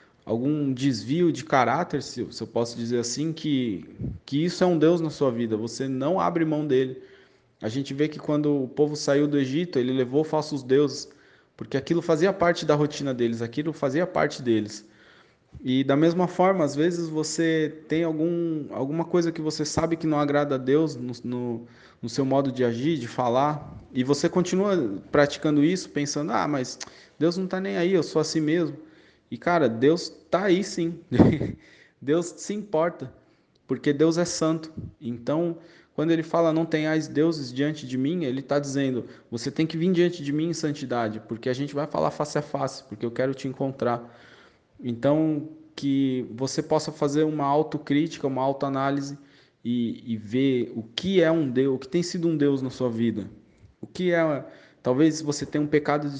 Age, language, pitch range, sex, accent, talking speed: 20-39, Portuguese, 130-160 Hz, male, Brazilian, 190 wpm